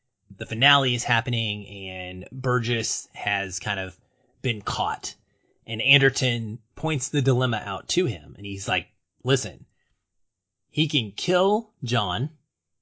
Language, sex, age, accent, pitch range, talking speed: English, male, 30-49, American, 95-130 Hz, 125 wpm